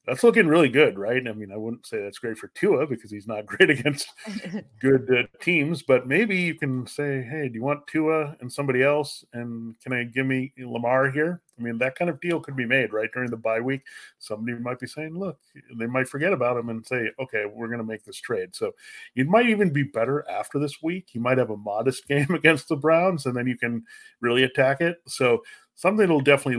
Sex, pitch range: male, 115-160 Hz